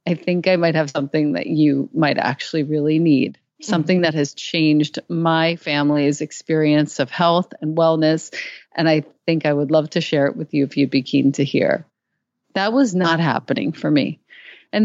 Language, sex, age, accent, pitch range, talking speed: English, female, 40-59, American, 150-205 Hz, 190 wpm